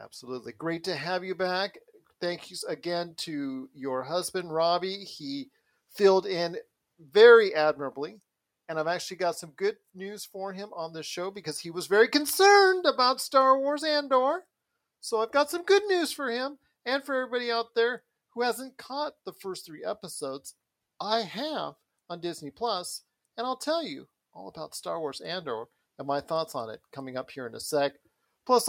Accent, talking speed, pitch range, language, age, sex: American, 175 wpm, 160-260 Hz, English, 40-59, male